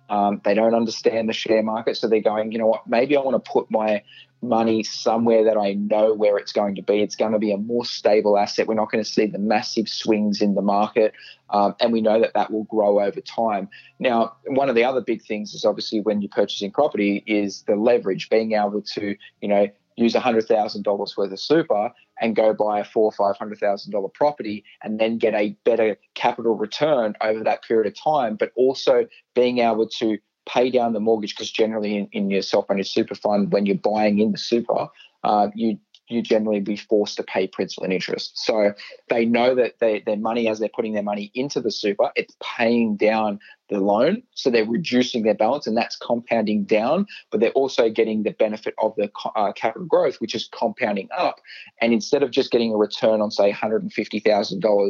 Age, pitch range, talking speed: 20-39, 105-115 Hz, 210 wpm